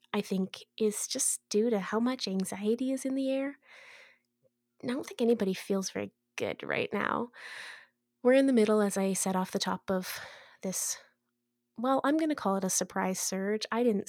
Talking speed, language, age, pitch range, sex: 190 wpm, English, 20-39, 190-235 Hz, female